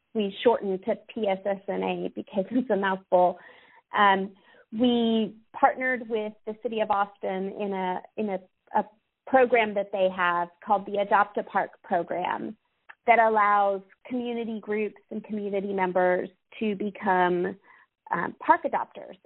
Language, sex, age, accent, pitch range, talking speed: English, female, 30-49, American, 195-240 Hz, 130 wpm